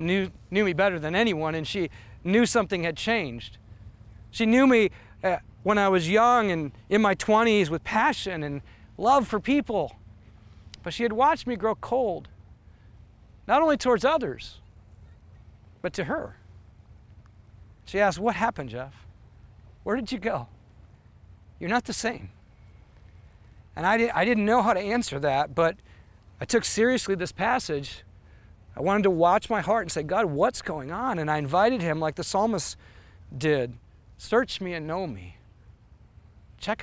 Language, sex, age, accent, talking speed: English, male, 40-59, American, 160 wpm